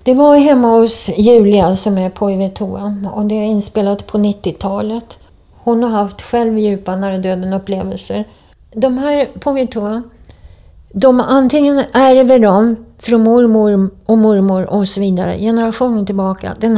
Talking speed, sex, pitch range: 135 wpm, female, 190-225 Hz